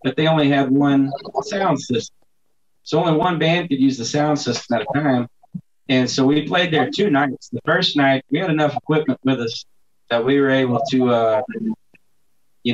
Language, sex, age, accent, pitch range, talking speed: English, male, 30-49, American, 125-150 Hz, 200 wpm